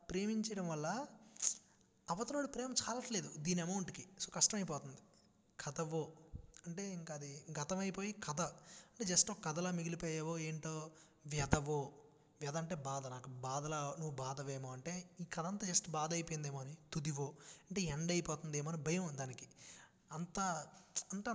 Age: 20-39